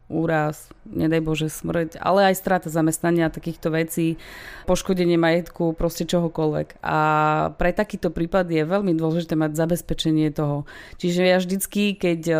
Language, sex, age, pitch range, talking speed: Slovak, female, 20-39, 165-185 Hz, 135 wpm